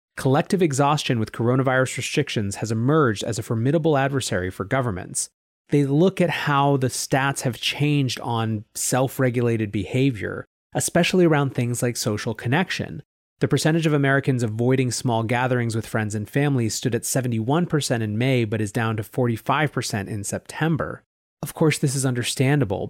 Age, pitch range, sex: 30-49, 110-135 Hz, male